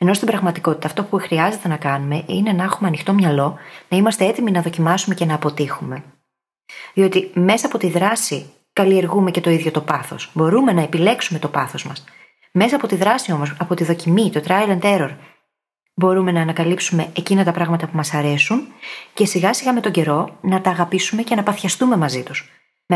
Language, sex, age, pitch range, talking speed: Greek, female, 30-49, 160-230 Hz, 195 wpm